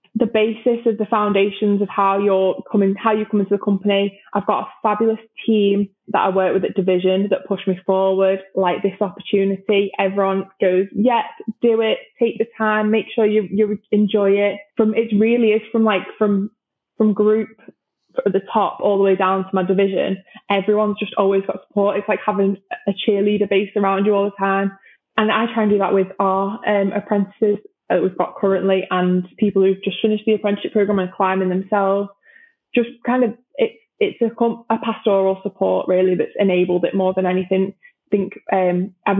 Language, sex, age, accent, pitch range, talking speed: English, female, 20-39, British, 195-215 Hz, 195 wpm